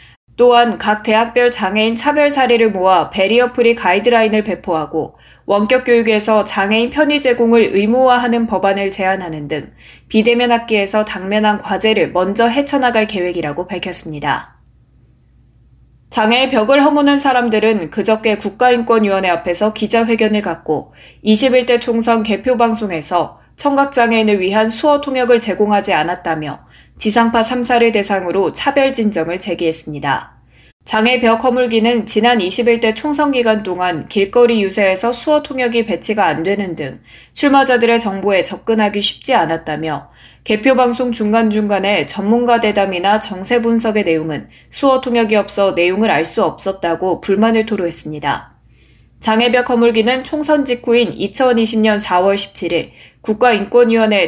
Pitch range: 195-240 Hz